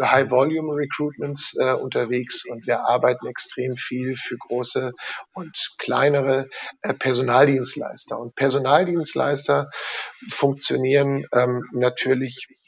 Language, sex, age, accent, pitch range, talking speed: German, male, 50-69, German, 125-150 Hz, 85 wpm